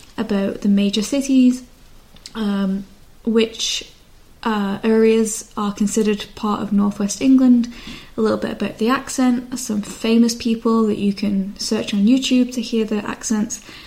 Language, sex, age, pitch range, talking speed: English, female, 10-29, 210-250 Hz, 145 wpm